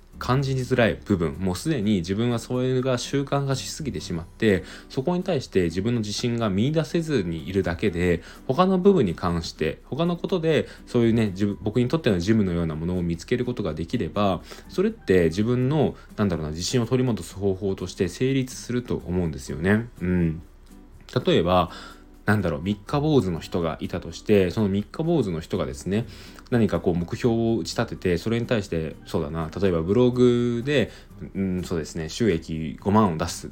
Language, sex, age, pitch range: Japanese, male, 20-39, 85-125 Hz